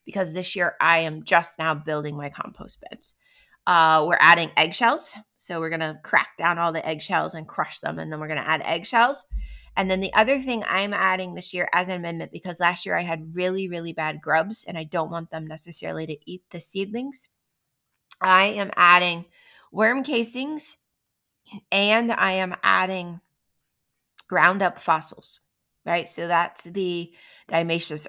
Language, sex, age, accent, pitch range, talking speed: English, female, 20-39, American, 160-195 Hz, 175 wpm